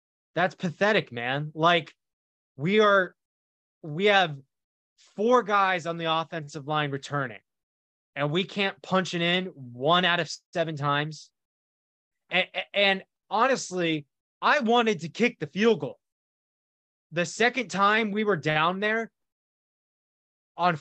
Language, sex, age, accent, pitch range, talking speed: English, male, 20-39, American, 150-210 Hz, 125 wpm